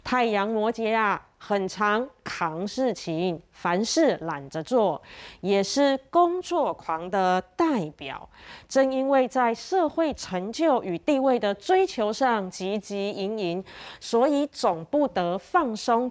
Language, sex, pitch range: Chinese, female, 200-300 Hz